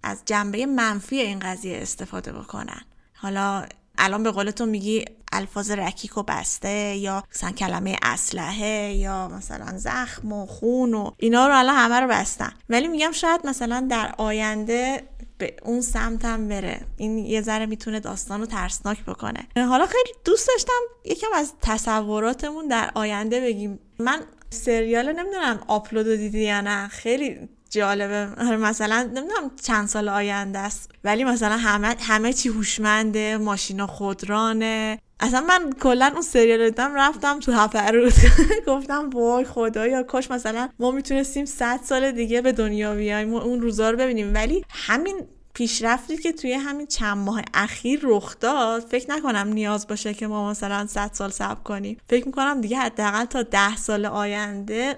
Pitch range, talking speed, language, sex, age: 210-255 Hz, 155 wpm, Persian, female, 20-39